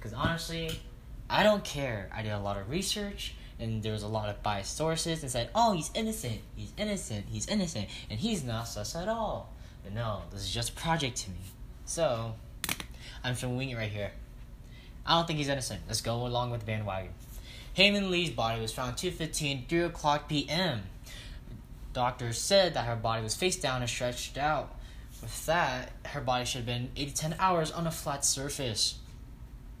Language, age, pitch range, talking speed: English, 10-29, 110-145 Hz, 195 wpm